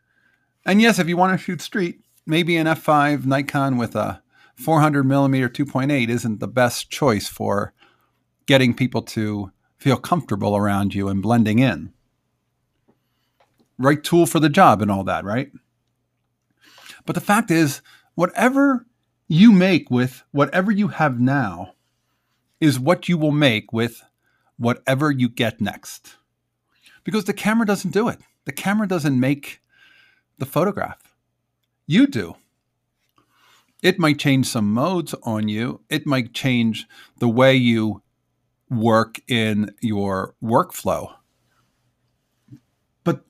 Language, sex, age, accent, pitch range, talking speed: English, male, 50-69, American, 115-180 Hz, 130 wpm